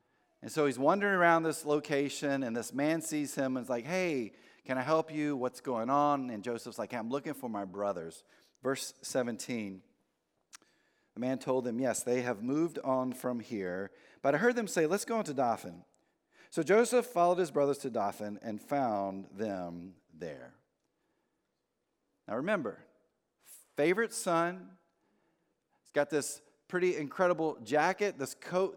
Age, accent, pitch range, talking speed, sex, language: 40-59, American, 120-165 Hz, 160 wpm, male, English